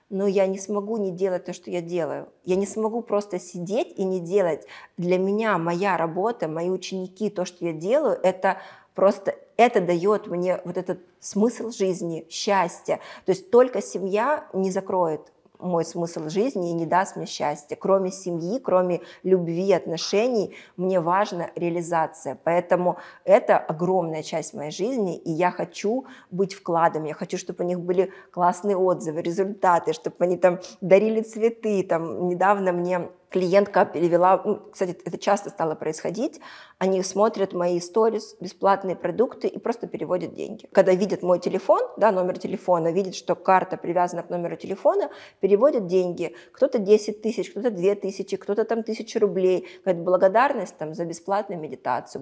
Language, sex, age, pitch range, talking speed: Russian, female, 20-39, 175-200 Hz, 155 wpm